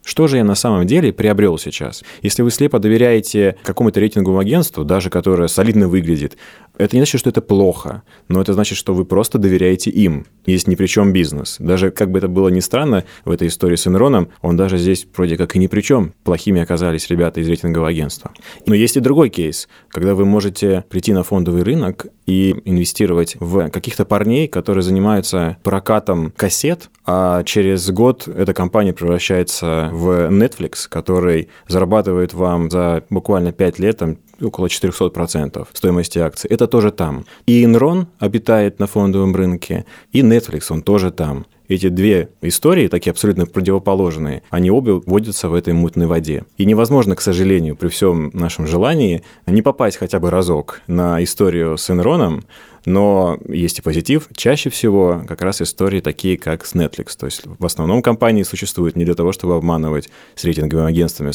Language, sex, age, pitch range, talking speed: Russian, male, 20-39, 85-100 Hz, 170 wpm